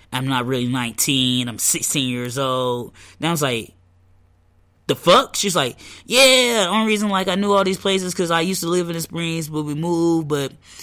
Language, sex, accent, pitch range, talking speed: English, male, American, 115-145 Hz, 210 wpm